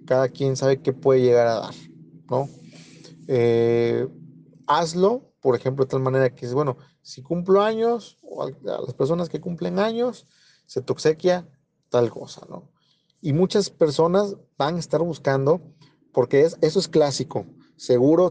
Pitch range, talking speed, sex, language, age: 130-185 Hz, 155 wpm, male, Spanish, 40-59